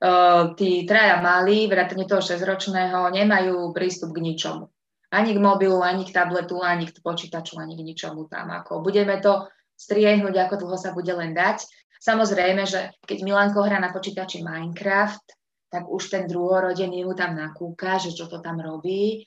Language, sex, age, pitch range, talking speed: Slovak, female, 20-39, 175-195 Hz, 165 wpm